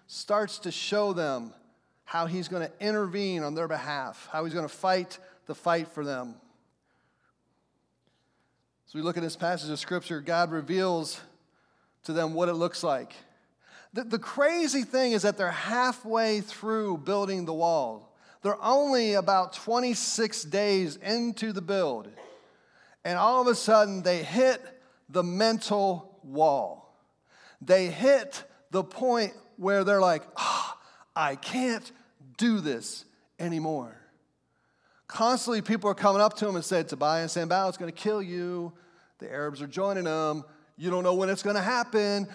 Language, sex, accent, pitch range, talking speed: English, male, American, 175-225 Hz, 155 wpm